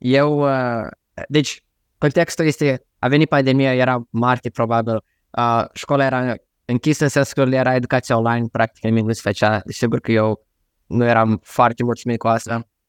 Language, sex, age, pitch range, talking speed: Romanian, male, 20-39, 110-140 Hz, 165 wpm